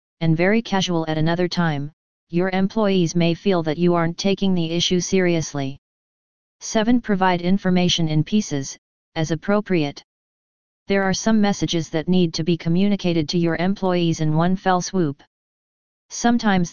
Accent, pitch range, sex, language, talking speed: American, 165-190 Hz, female, English, 145 wpm